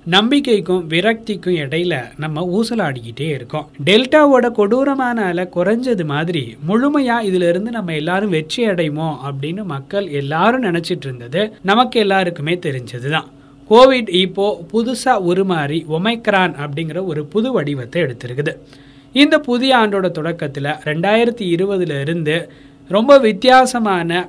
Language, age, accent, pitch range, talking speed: Tamil, 20-39, native, 150-220 Hz, 110 wpm